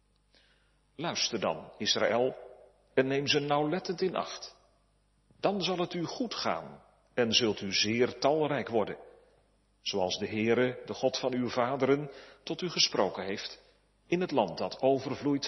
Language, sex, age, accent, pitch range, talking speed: Dutch, male, 40-59, Belgian, 120-160 Hz, 145 wpm